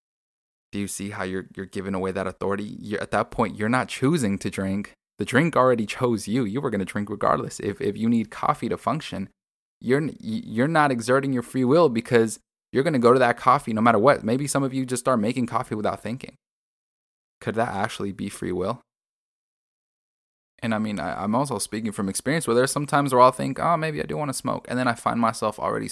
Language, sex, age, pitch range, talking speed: English, male, 20-39, 100-125 Hz, 230 wpm